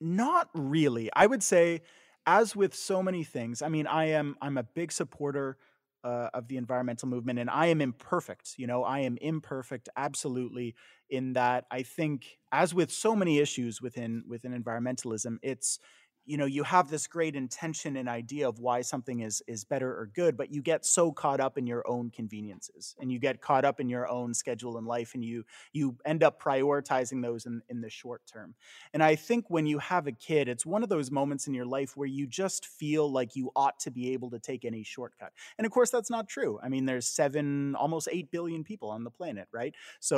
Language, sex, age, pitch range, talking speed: English, male, 30-49, 120-155 Hz, 215 wpm